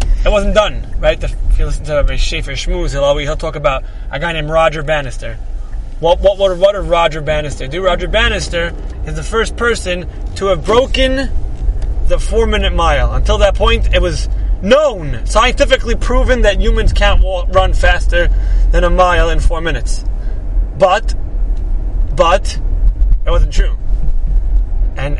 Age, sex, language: 30-49, male, English